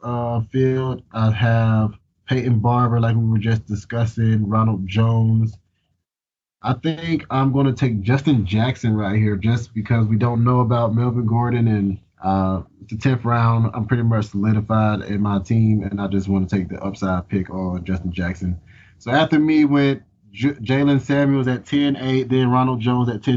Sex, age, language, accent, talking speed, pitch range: male, 20-39, English, American, 175 wpm, 110-130 Hz